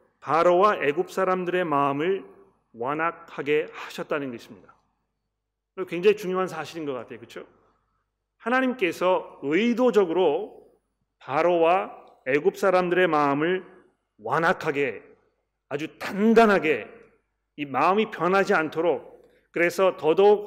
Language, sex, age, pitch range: Korean, male, 40-59, 150-205 Hz